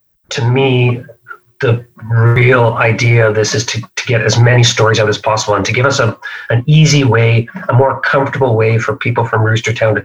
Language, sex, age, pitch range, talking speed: English, male, 40-59, 110-130 Hz, 205 wpm